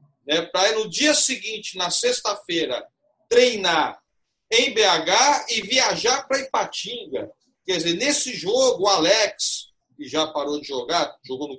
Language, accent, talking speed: Portuguese, Brazilian, 140 wpm